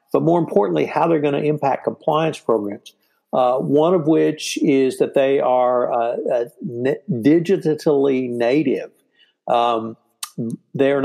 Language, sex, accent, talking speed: English, male, American, 130 wpm